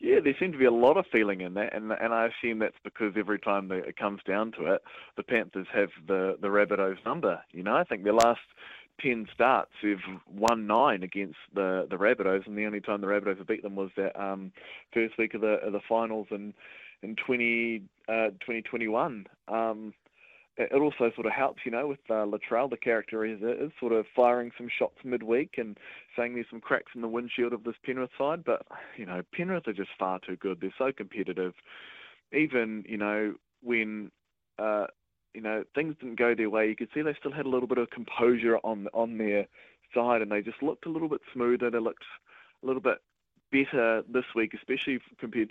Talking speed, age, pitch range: 215 wpm, 20-39, 105-120 Hz